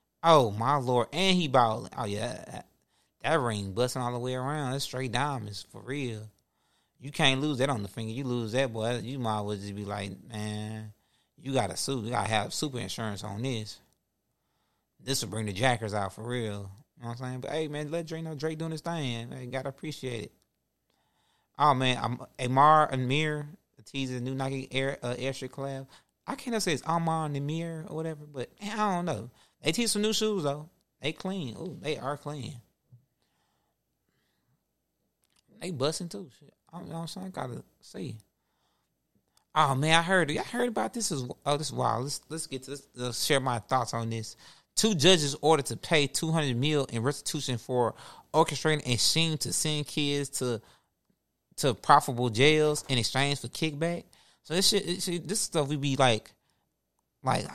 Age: 30-49